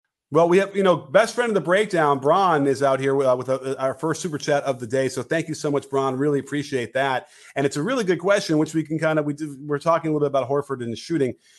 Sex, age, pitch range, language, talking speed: male, 40-59, 140-200 Hz, English, 295 wpm